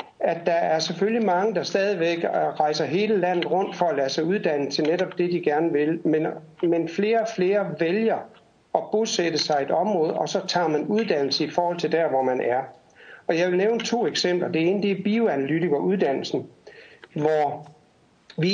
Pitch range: 150-200 Hz